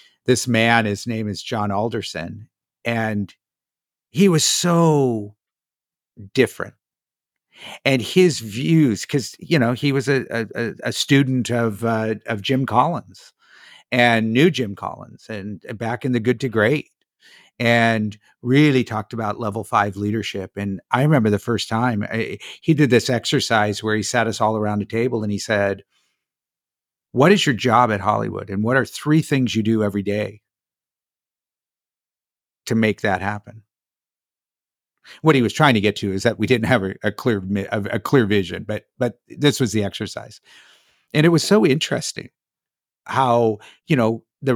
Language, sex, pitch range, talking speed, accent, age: English, male, 105-135 Hz, 165 wpm, American, 50-69